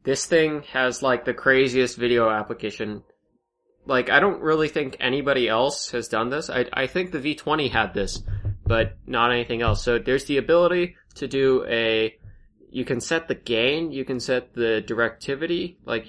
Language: English